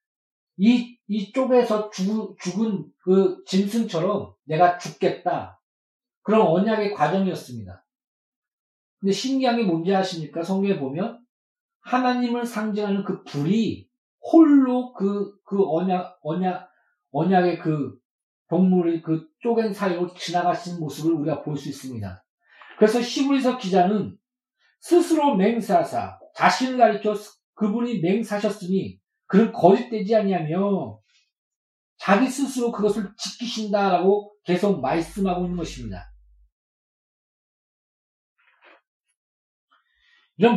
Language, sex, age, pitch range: Korean, male, 40-59, 160-220 Hz